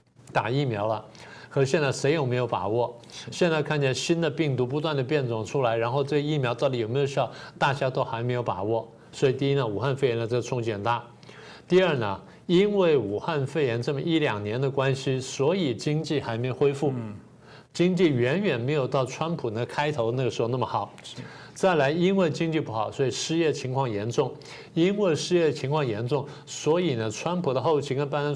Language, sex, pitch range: Chinese, male, 120-150 Hz